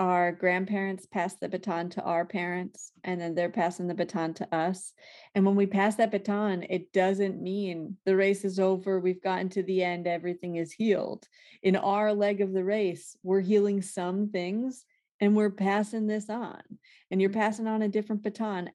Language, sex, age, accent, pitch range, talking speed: English, female, 30-49, American, 175-205 Hz, 190 wpm